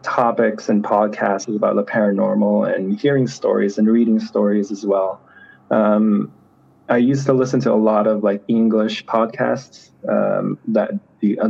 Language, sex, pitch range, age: Filipino, male, 105-125 Hz, 20-39